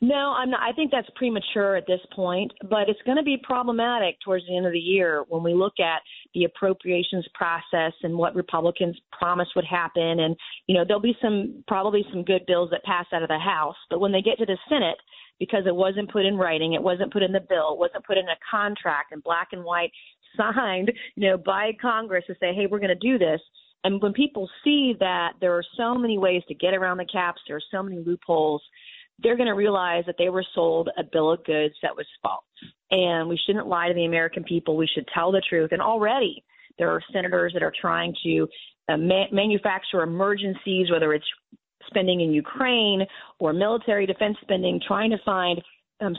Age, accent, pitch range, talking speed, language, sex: 40-59, American, 170-210 Hz, 220 wpm, English, female